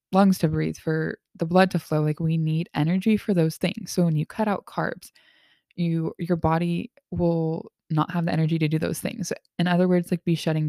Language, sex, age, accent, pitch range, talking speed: English, female, 20-39, American, 165-195 Hz, 220 wpm